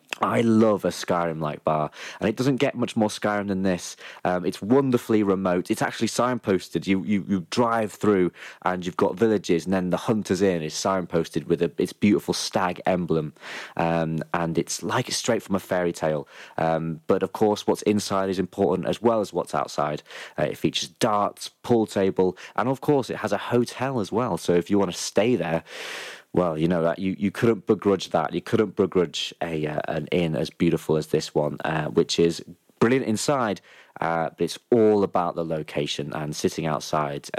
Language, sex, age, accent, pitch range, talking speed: English, male, 30-49, British, 80-105 Hz, 200 wpm